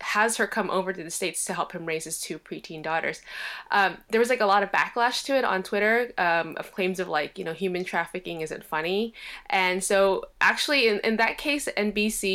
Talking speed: 225 wpm